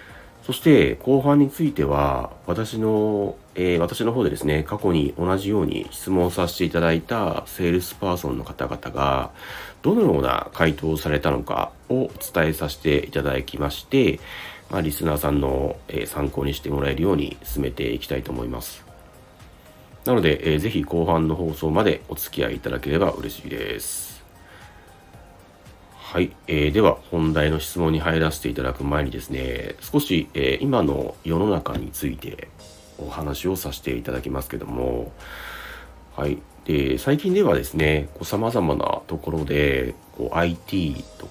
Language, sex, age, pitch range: Japanese, male, 40-59, 70-90 Hz